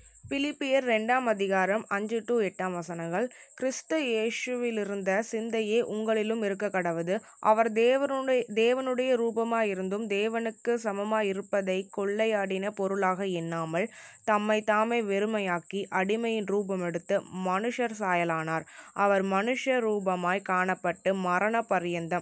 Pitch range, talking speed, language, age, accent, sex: 190-235 Hz, 90 wpm, Tamil, 20-39, native, female